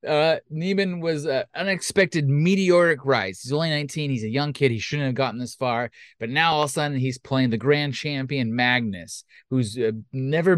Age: 30-49